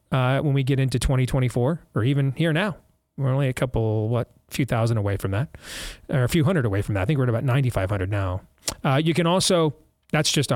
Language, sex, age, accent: English, male, 40-59, American